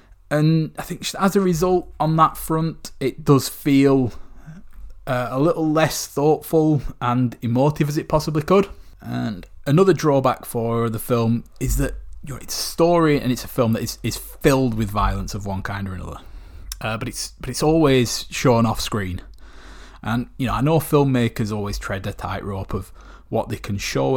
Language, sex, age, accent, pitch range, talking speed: English, male, 20-39, British, 105-145 Hz, 185 wpm